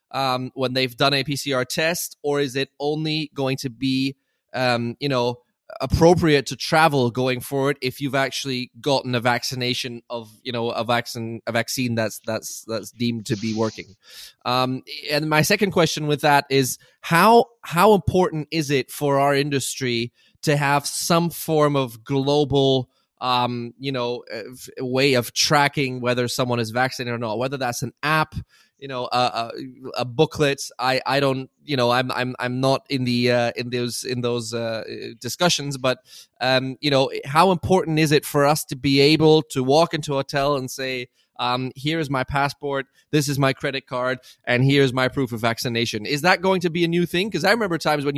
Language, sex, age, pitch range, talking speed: German, male, 20-39, 125-145 Hz, 190 wpm